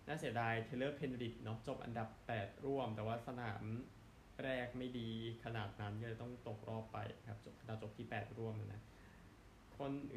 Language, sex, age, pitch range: Thai, male, 20-39, 110-130 Hz